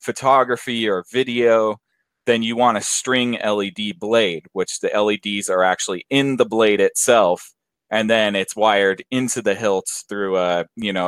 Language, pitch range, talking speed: English, 95-115 Hz, 160 wpm